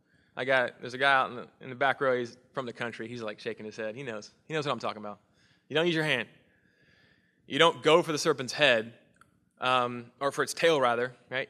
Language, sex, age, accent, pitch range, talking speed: English, male, 20-39, American, 120-155 Hz, 255 wpm